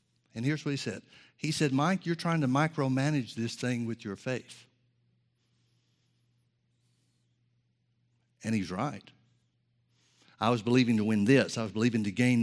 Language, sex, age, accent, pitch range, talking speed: English, male, 60-79, American, 110-125 Hz, 150 wpm